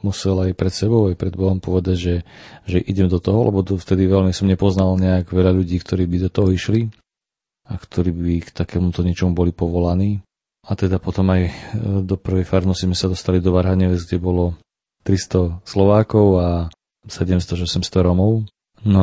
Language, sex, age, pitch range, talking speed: Slovak, male, 30-49, 90-100 Hz, 175 wpm